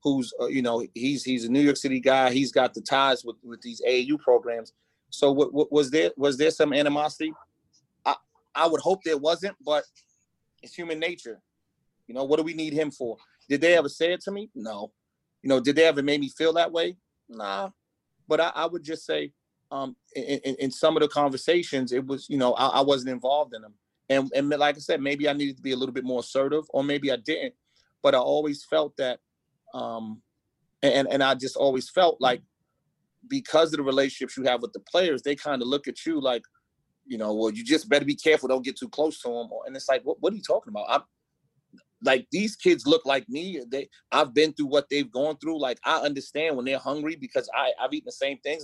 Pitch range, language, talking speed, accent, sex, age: 130-160 Hz, English, 235 wpm, American, male, 30-49